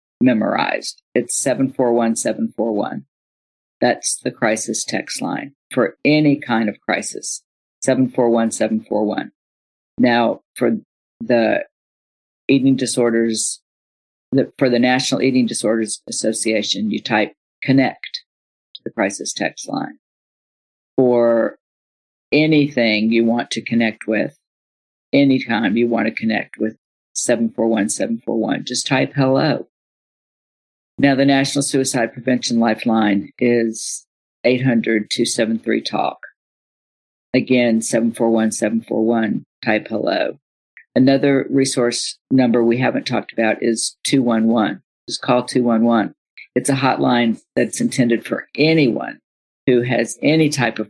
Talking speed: 100 wpm